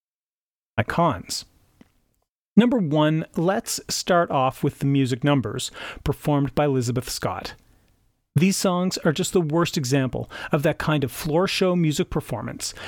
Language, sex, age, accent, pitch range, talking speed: English, male, 40-59, American, 140-200 Hz, 135 wpm